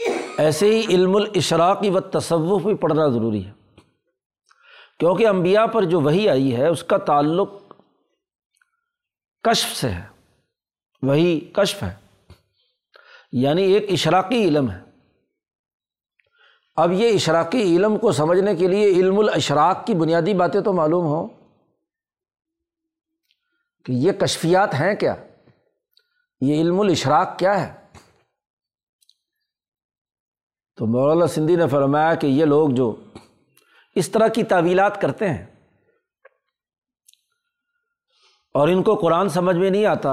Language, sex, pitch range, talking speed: Urdu, male, 160-230 Hz, 120 wpm